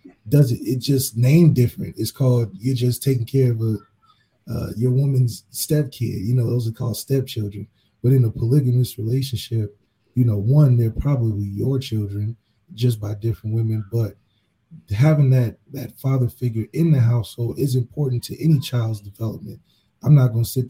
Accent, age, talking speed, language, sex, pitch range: American, 20-39, 175 wpm, English, male, 115-135 Hz